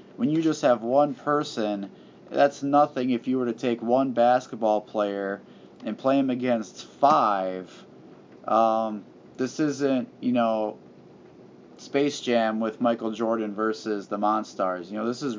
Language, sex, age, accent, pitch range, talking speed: English, male, 30-49, American, 105-140 Hz, 150 wpm